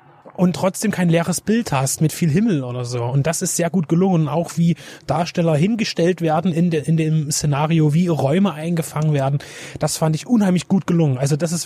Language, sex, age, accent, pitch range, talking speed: German, male, 30-49, German, 150-180 Hz, 200 wpm